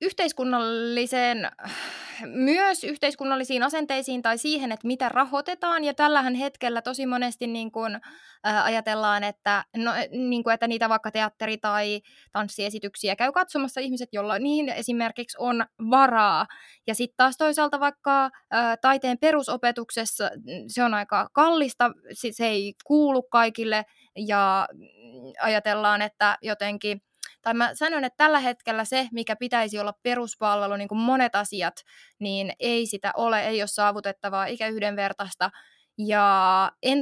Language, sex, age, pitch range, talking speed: Finnish, female, 20-39, 205-255 Hz, 130 wpm